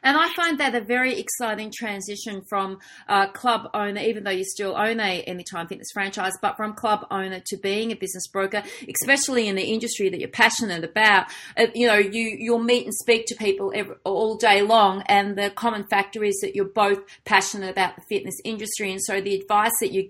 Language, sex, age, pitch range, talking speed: English, female, 30-49, 200-245 Hz, 215 wpm